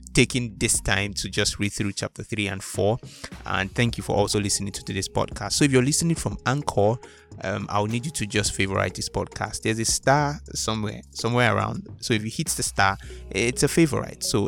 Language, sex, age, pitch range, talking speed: English, male, 20-39, 100-120 Hz, 210 wpm